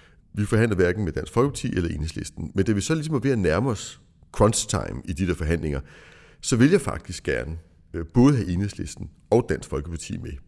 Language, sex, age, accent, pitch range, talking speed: Danish, male, 60-79, native, 90-120 Hz, 200 wpm